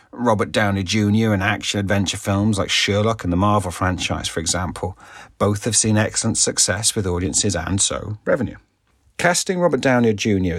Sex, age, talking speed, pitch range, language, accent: male, 40-59, 160 wpm, 100-130 Hz, English, British